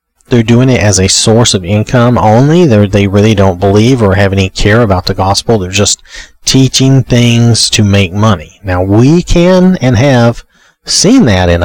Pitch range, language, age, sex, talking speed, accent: 100-130 Hz, English, 40-59, male, 180 wpm, American